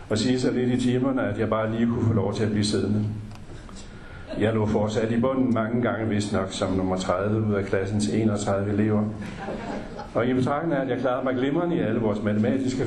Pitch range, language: 100-120 Hz, Danish